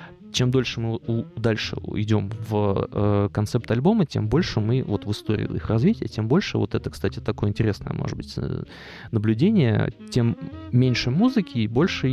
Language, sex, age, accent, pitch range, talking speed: Russian, male, 20-39, native, 105-130 Hz, 165 wpm